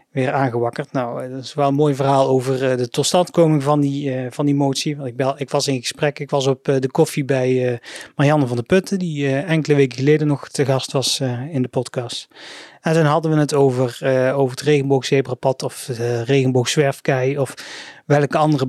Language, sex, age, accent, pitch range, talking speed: Dutch, male, 30-49, Dutch, 130-150 Hz, 215 wpm